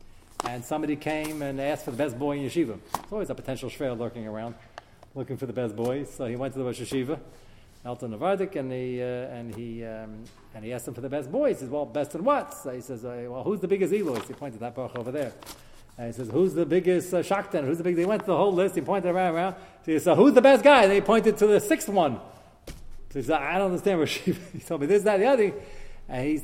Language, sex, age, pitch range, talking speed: English, male, 30-49, 125-185 Hz, 265 wpm